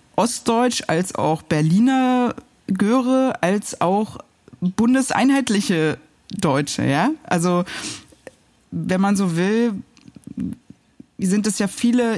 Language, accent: German, German